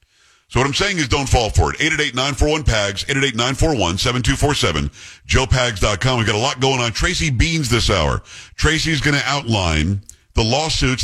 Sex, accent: male, American